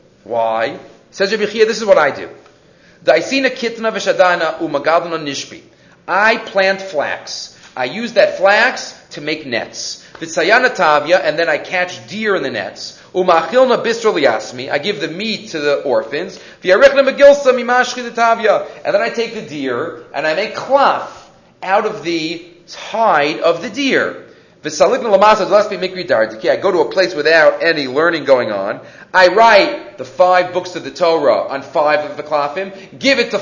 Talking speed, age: 160 wpm, 40-59